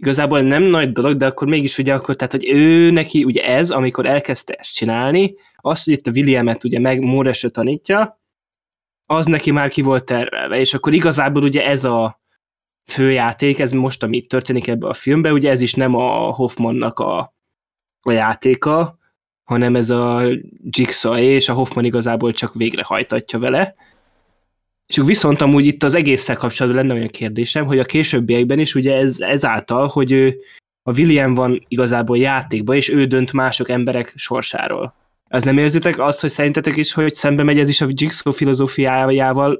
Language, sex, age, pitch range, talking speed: Hungarian, male, 20-39, 125-140 Hz, 170 wpm